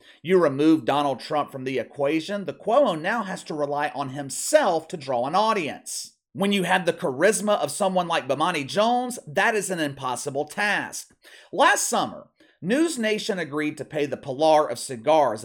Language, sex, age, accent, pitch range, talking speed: English, male, 40-59, American, 130-200 Hz, 175 wpm